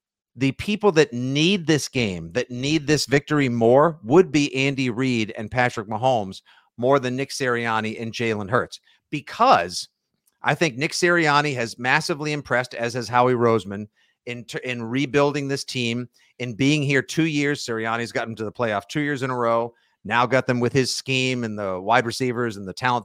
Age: 50-69